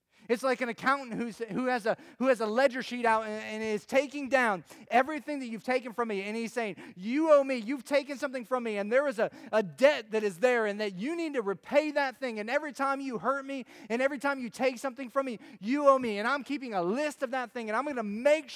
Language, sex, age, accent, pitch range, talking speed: English, male, 30-49, American, 185-255 Hz, 260 wpm